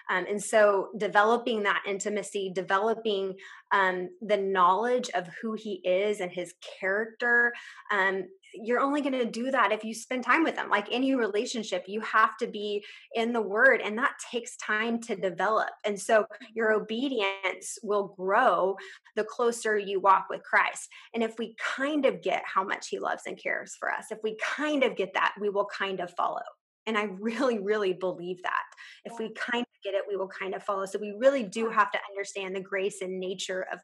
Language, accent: English, American